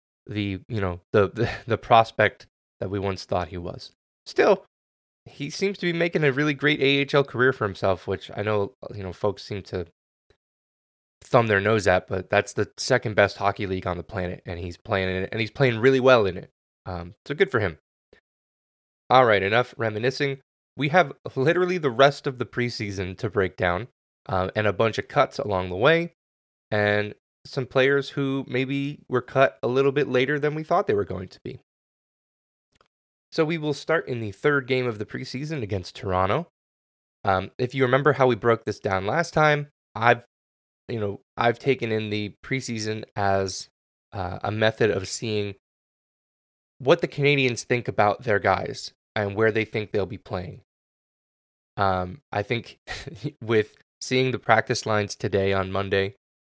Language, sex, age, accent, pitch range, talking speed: English, male, 20-39, American, 95-135 Hz, 180 wpm